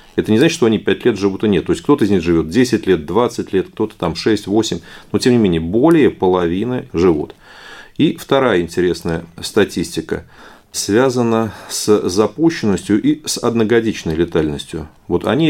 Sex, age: male, 40-59